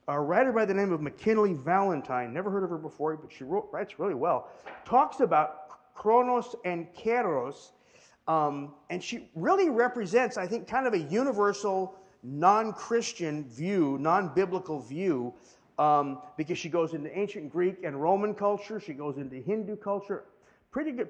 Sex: male